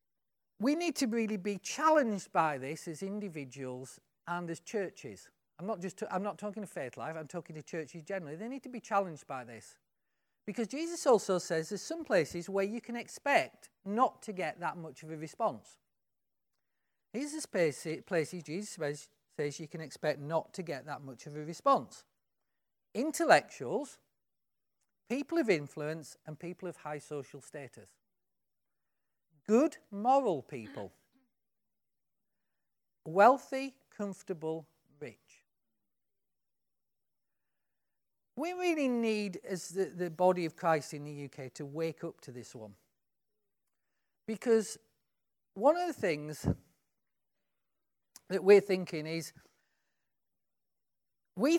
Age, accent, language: 40-59, British, English